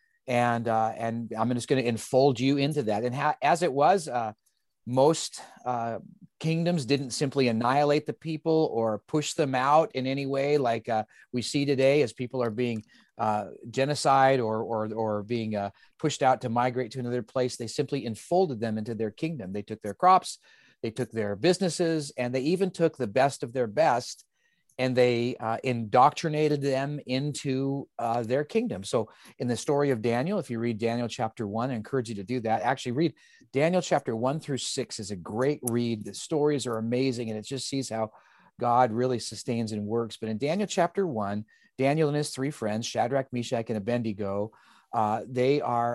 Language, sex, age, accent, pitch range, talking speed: English, male, 30-49, American, 115-145 Hz, 195 wpm